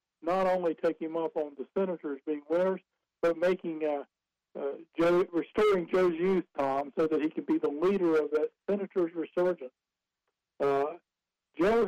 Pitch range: 150-185 Hz